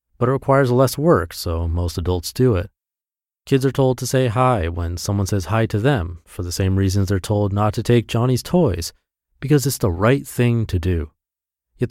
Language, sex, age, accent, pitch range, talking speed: English, male, 30-49, American, 90-125 Hz, 205 wpm